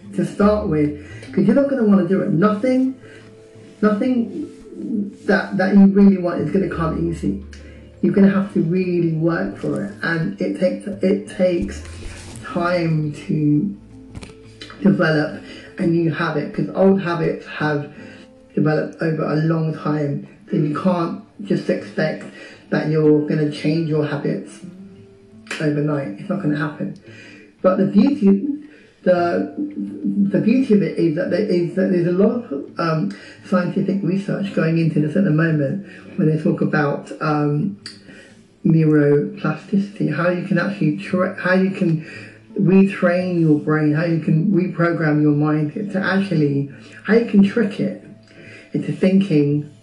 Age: 30-49